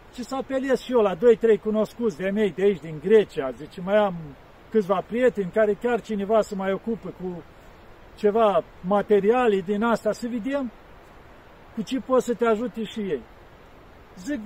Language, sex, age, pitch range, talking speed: Romanian, male, 50-69, 205-245 Hz, 175 wpm